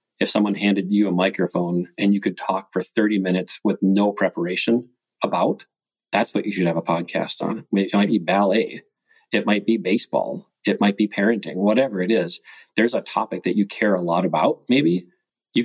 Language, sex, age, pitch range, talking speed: English, male, 40-59, 90-105 Hz, 195 wpm